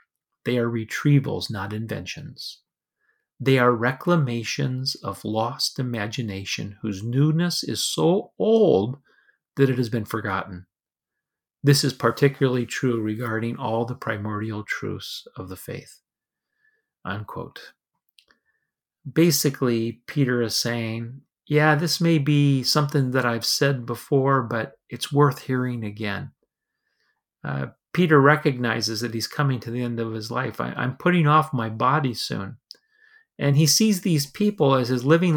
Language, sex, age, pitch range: English, male, 40-59, 120-150 Hz